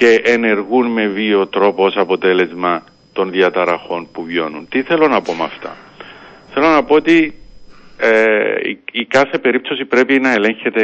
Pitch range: 95-120 Hz